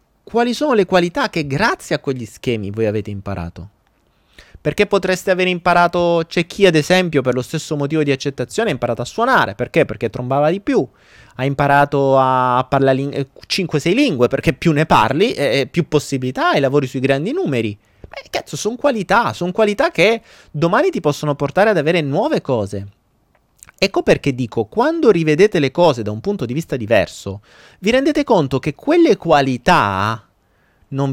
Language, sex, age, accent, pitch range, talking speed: Italian, male, 30-49, native, 115-175 Hz, 175 wpm